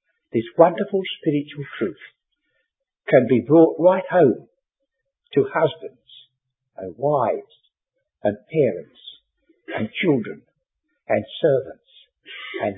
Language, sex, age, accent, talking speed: English, male, 60-79, British, 95 wpm